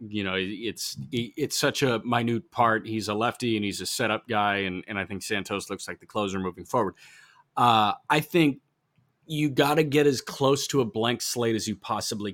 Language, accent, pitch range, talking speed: English, American, 100-125 Hz, 210 wpm